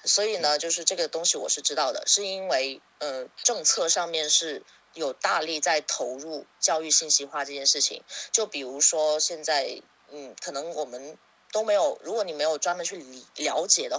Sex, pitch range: female, 155-210 Hz